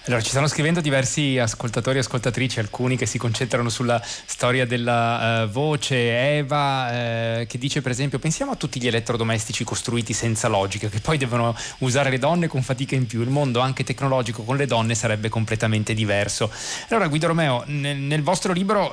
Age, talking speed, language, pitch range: 30-49, 185 wpm, Italian, 110-130 Hz